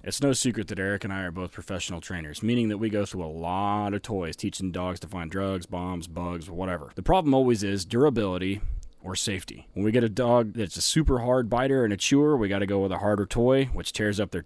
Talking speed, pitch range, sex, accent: 250 wpm, 95-115 Hz, male, American